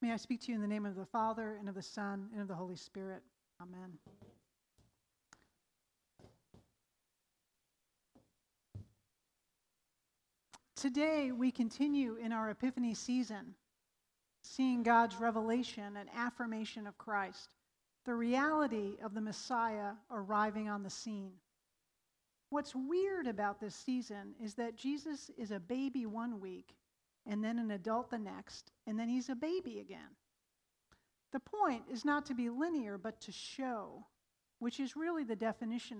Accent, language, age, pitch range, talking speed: American, English, 40-59, 210-255 Hz, 140 wpm